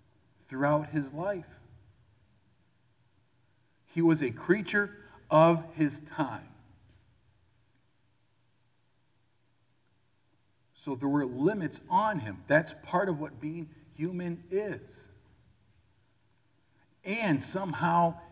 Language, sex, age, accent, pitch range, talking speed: English, male, 50-69, American, 115-160 Hz, 80 wpm